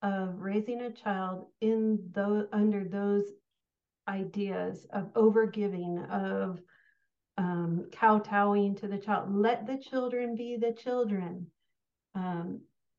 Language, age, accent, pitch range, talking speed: English, 40-59, American, 190-220 Hz, 110 wpm